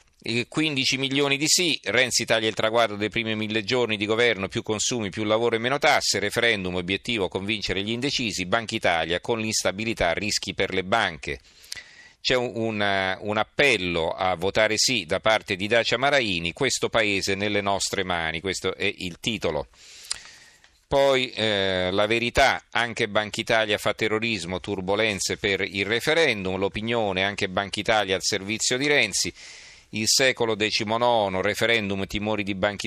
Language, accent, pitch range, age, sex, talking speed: Italian, native, 95-115 Hz, 40-59, male, 150 wpm